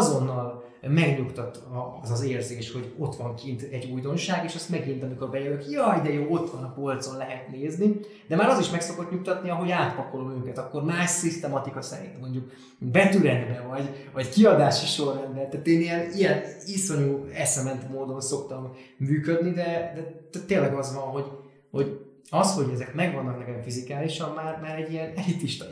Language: Hungarian